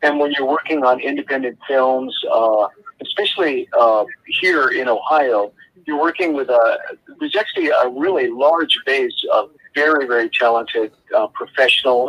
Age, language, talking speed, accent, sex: 50-69, English, 145 wpm, American, male